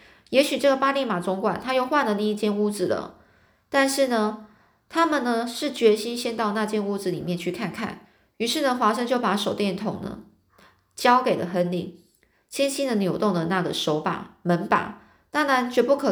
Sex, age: female, 20-39